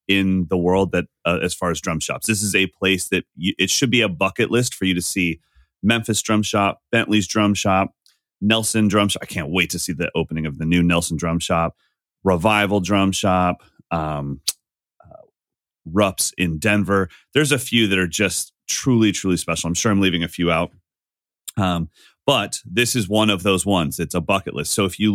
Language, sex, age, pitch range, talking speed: English, male, 30-49, 85-105 Hz, 210 wpm